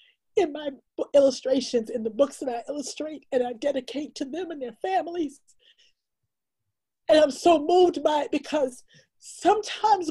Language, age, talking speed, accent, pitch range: English, 40-59, 150 wpm, American, 255-330 Hz